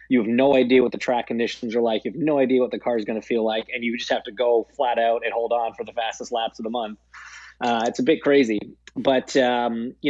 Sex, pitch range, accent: male, 110-140 Hz, American